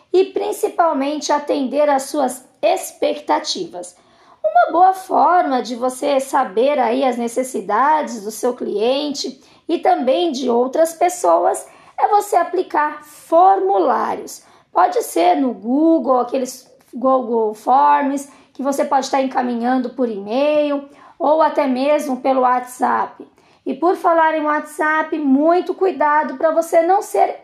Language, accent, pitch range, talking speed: Portuguese, Brazilian, 265-325 Hz, 125 wpm